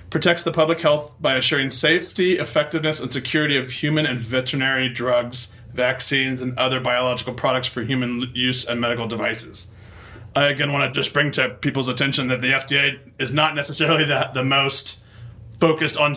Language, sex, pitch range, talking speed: English, male, 125-145 Hz, 170 wpm